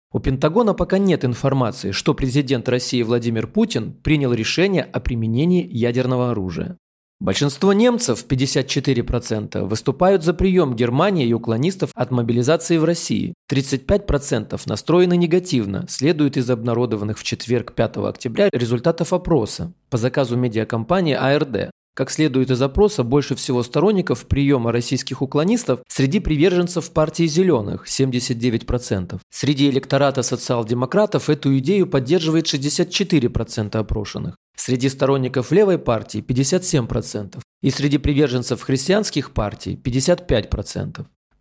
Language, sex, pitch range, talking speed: Russian, male, 125-165 Hz, 120 wpm